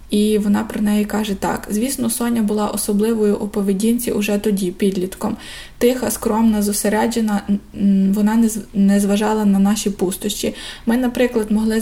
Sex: female